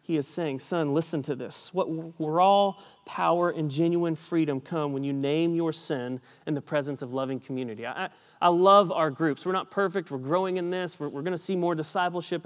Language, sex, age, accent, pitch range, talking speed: English, male, 30-49, American, 145-185 Hz, 215 wpm